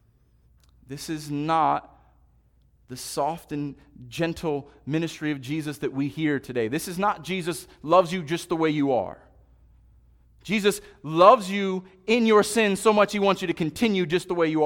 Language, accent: English, American